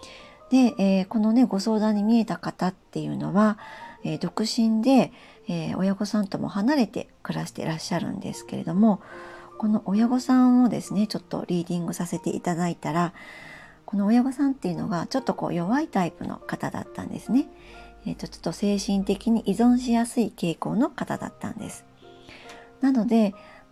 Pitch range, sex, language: 180-245 Hz, male, Japanese